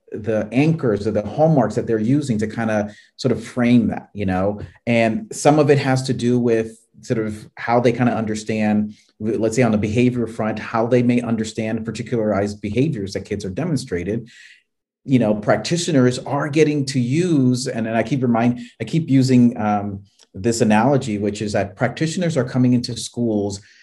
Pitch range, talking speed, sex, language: 110-130 Hz, 185 wpm, male, English